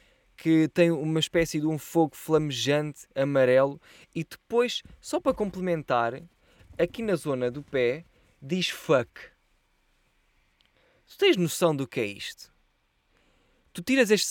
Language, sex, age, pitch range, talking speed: Portuguese, male, 20-39, 125-180 Hz, 130 wpm